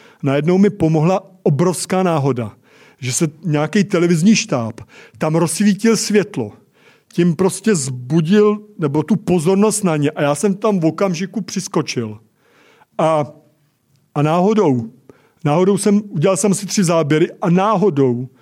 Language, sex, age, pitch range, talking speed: Czech, male, 50-69, 145-190 Hz, 130 wpm